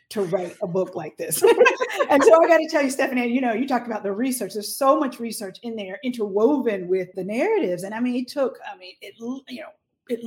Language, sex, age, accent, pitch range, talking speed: English, female, 40-59, American, 195-255 Hz, 245 wpm